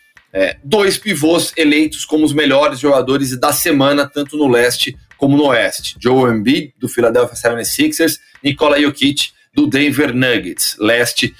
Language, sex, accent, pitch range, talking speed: Portuguese, male, Brazilian, 140-210 Hz, 135 wpm